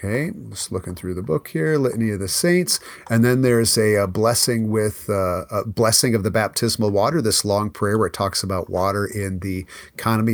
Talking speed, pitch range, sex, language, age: 205 wpm, 100-125 Hz, male, English, 40-59